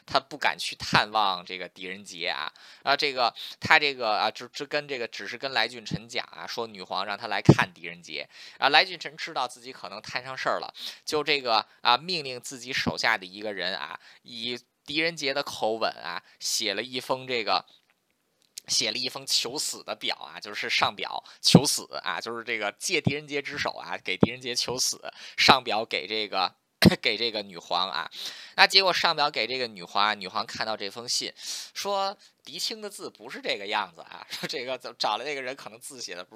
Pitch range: 105-135 Hz